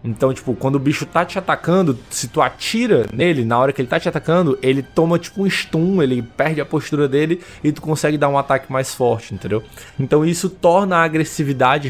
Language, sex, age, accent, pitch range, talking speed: Portuguese, male, 20-39, Brazilian, 115-145 Hz, 215 wpm